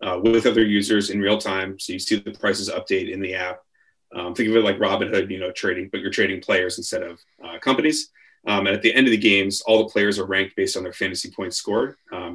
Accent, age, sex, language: American, 30-49, male, English